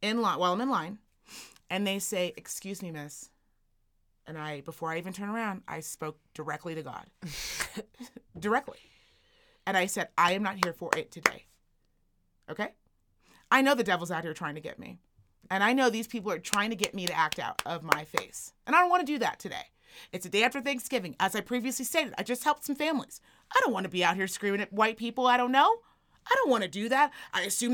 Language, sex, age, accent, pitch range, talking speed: English, female, 30-49, American, 180-255 Hz, 230 wpm